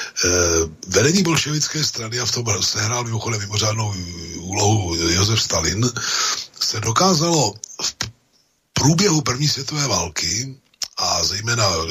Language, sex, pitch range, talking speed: Slovak, male, 100-140 Hz, 105 wpm